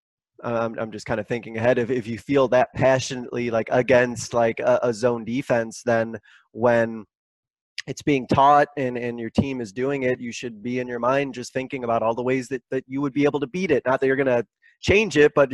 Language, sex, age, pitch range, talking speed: English, male, 20-39, 115-135 Hz, 235 wpm